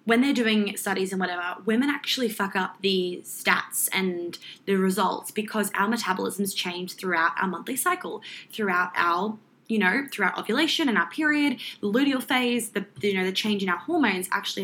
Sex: female